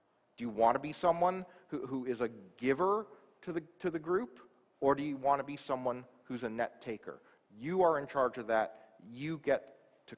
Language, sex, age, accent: English, male, 40-59, American